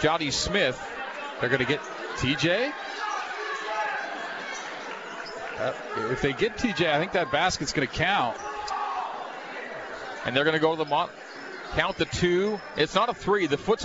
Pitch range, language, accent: 160-215 Hz, English, American